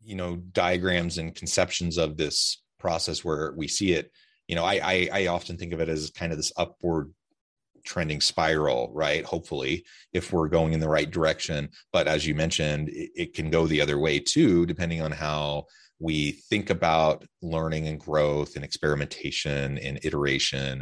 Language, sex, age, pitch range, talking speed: English, male, 30-49, 75-90 Hz, 180 wpm